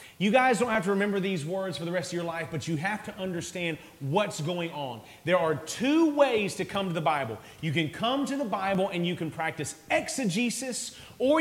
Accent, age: American, 30-49